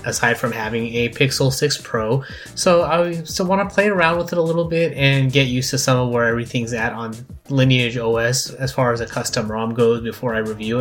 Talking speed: 215 wpm